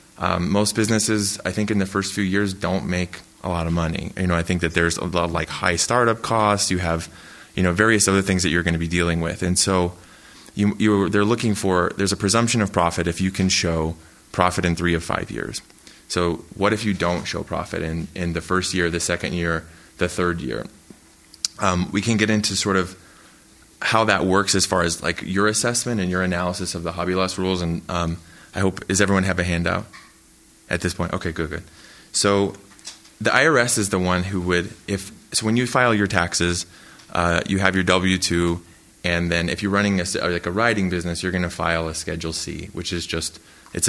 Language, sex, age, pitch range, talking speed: English, male, 20-39, 85-100 Hz, 230 wpm